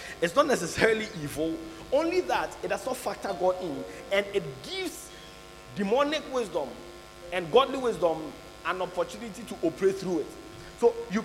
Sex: male